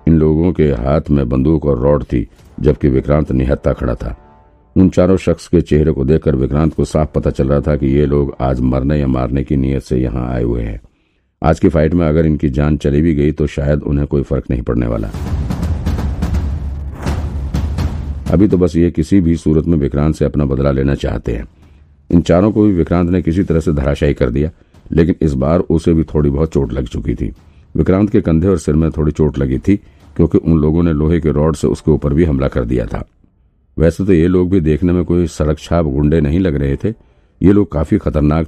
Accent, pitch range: native, 70-85 Hz